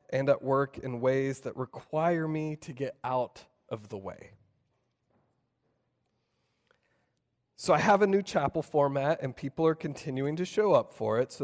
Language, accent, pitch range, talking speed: English, American, 140-175 Hz, 165 wpm